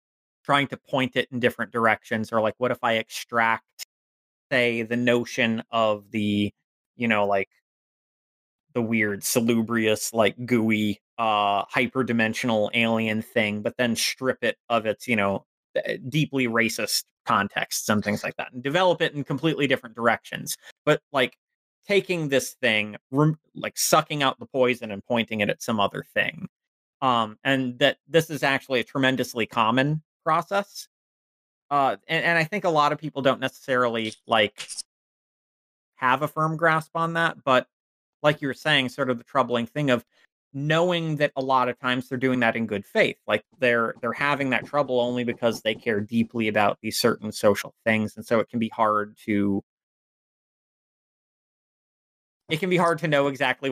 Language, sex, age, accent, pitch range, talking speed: English, male, 30-49, American, 110-140 Hz, 170 wpm